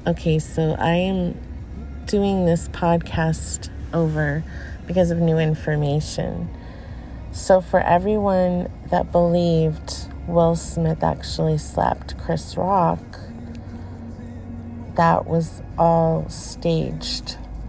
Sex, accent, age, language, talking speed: female, American, 30-49, English, 90 wpm